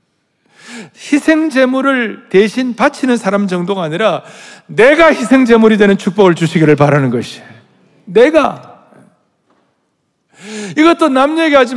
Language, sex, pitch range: Korean, male, 190-255 Hz